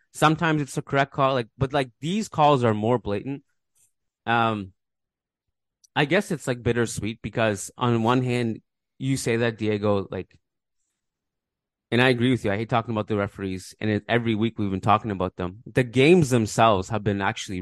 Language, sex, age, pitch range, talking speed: English, male, 20-39, 100-125 Hz, 185 wpm